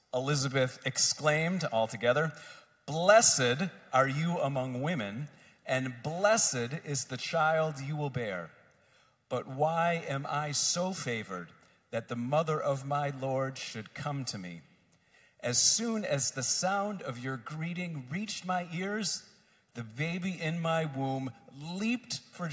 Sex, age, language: male, 40-59, English